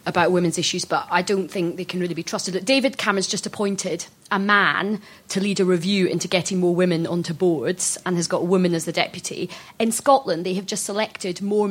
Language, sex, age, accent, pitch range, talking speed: English, female, 30-49, British, 180-210 Hz, 220 wpm